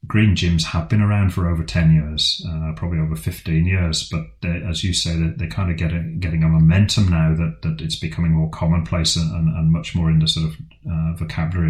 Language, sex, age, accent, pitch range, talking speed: English, male, 30-49, British, 80-90 Hz, 225 wpm